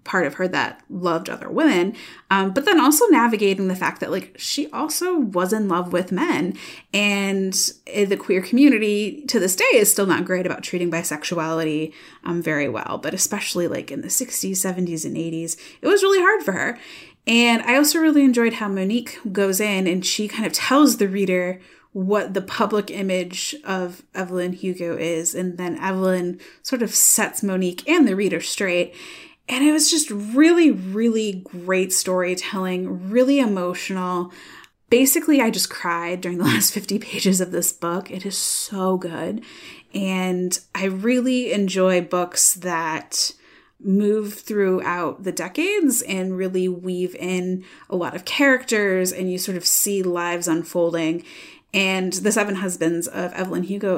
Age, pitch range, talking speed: 30-49, 180-230 Hz, 165 wpm